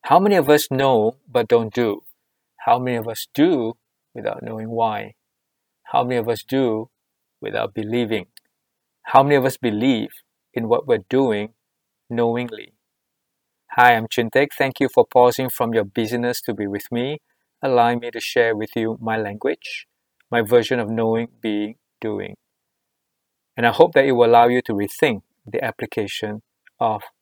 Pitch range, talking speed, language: 110-130 Hz, 165 wpm, English